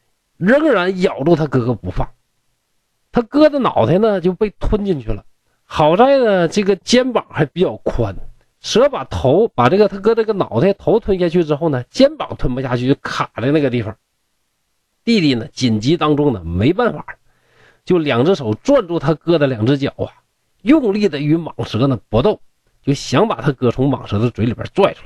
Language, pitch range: Chinese, 115-165 Hz